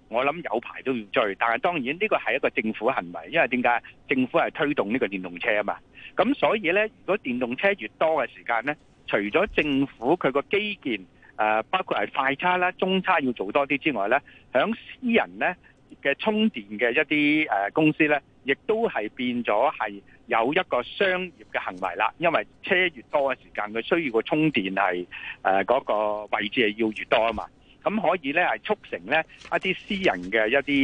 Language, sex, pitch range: Chinese, male, 115-175 Hz